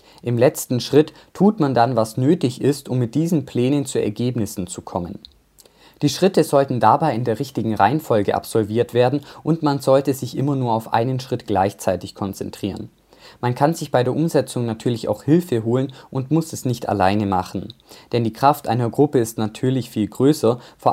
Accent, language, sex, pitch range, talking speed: German, German, male, 115-140 Hz, 185 wpm